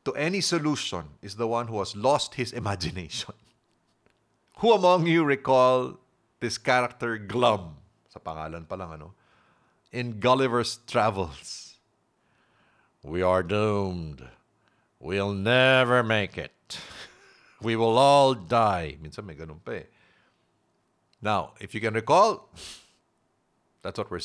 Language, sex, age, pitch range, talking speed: English, male, 50-69, 95-130 Hz, 115 wpm